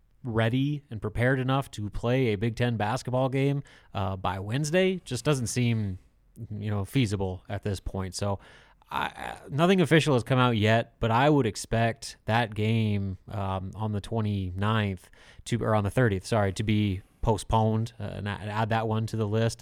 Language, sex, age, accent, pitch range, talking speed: English, male, 30-49, American, 105-130 Hz, 175 wpm